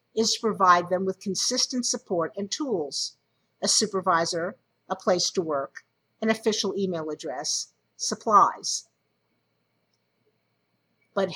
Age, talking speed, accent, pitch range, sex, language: 50-69, 110 wpm, American, 180-225 Hz, female, English